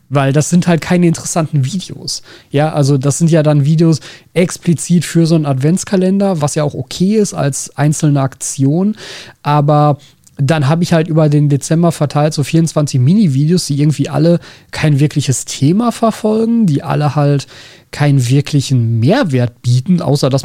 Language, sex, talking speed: German, male, 160 wpm